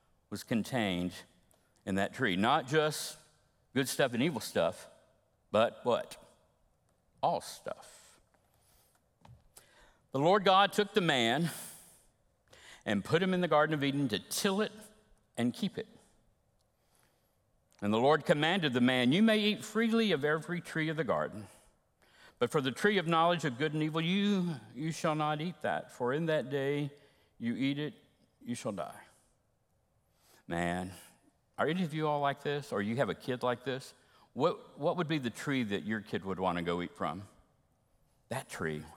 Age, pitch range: 60-79, 125-175 Hz